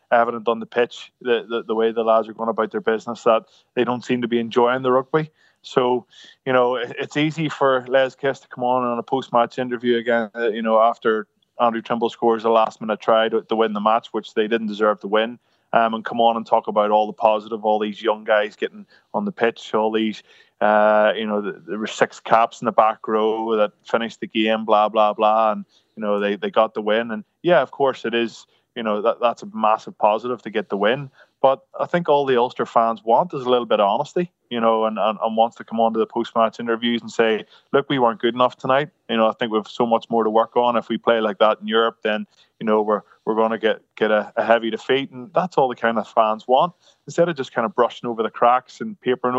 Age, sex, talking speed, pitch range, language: 20-39, male, 255 wpm, 110-125 Hz, English